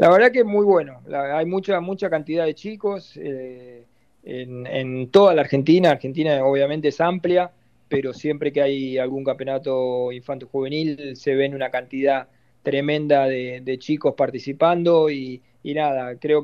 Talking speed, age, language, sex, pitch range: 160 wpm, 20-39, Spanish, male, 130-150 Hz